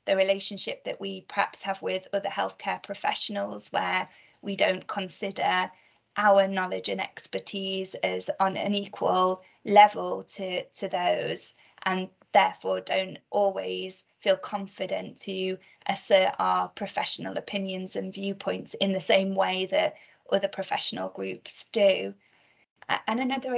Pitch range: 185-210 Hz